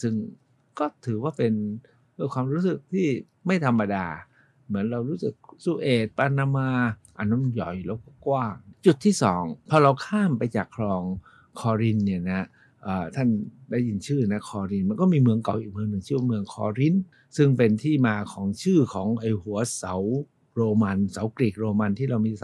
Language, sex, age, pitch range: Thai, male, 60-79, 100-135 Hz